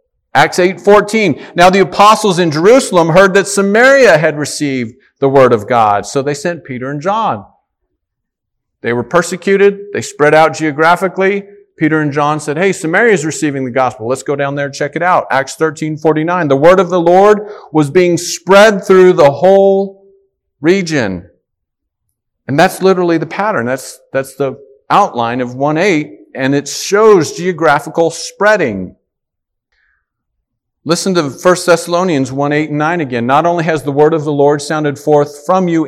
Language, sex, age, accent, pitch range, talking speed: English, male, 50-69, American, 145-195 Hz, 165 wpm